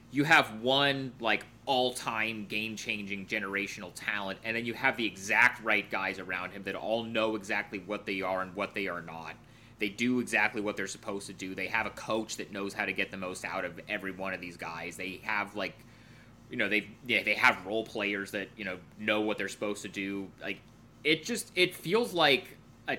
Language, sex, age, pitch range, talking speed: English, male, 30-49, 95-120 Hz, 215 wpm